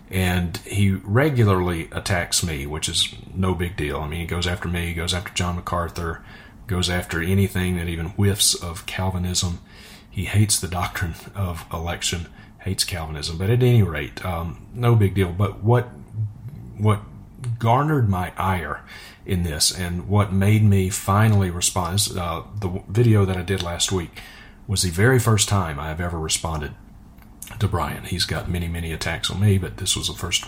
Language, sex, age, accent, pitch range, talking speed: English, male, 40-59, American, 85-105 Hz, 175 wpm